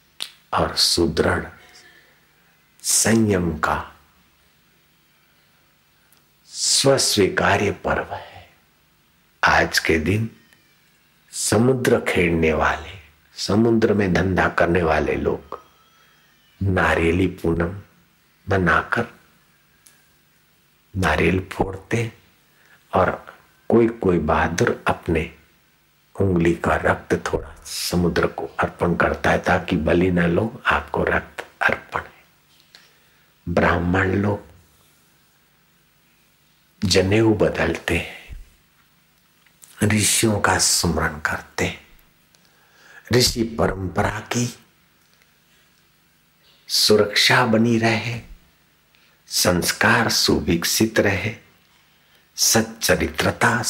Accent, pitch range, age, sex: native, 80-110 Hz, 60-79, male